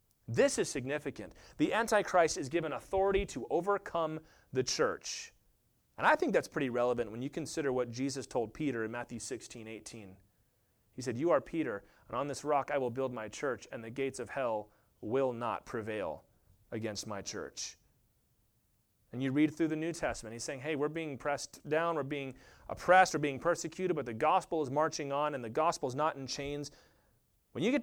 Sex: male